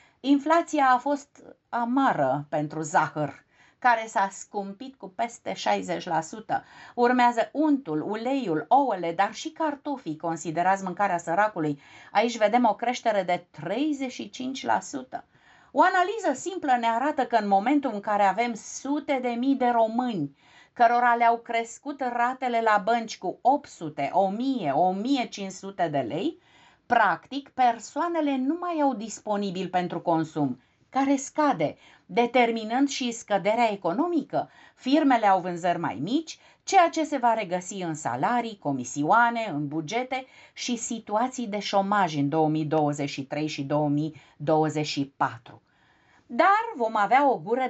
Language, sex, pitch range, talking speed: Romanian, female, 170-260 Hz, 125 wpm